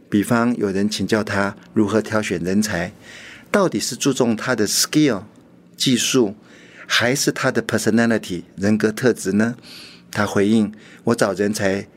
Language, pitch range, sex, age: Chinese, 100-120 Hz, male, 50-69